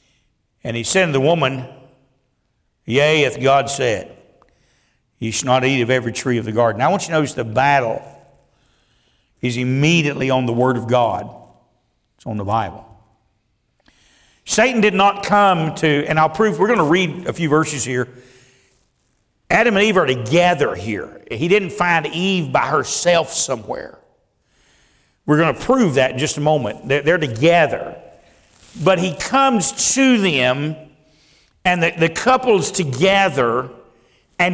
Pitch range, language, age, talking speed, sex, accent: 130-200 Hz, English, 50-69, 155 wpm, male, American